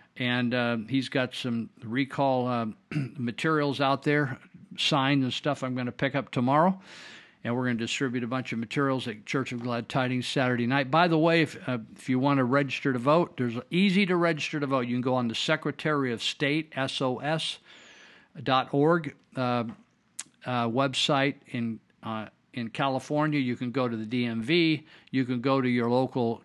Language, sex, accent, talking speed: English, male, American, 190 wpm